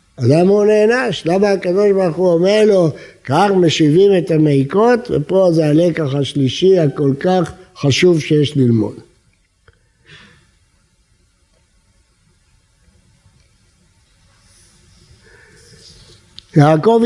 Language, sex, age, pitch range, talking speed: Hebrew, male, 60-79, 150-245 Hz, 85 wpm